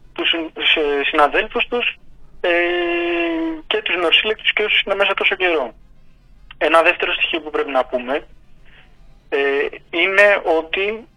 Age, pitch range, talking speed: 30-49, 135-185 Hz, 115 wpm